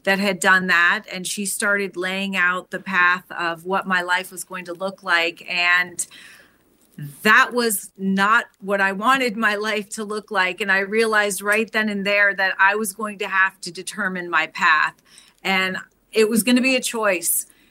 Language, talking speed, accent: English, 190 wpm, American